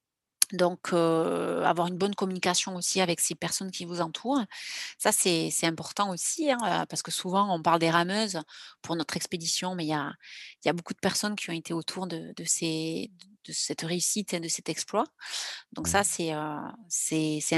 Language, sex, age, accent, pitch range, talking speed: French, female, 30-49, French, 170-205 Hz, 195 wpm